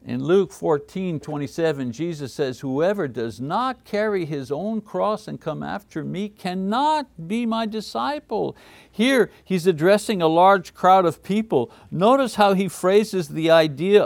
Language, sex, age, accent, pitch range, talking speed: English, male, 60-79, American, 170-235 Hz, 150 wpm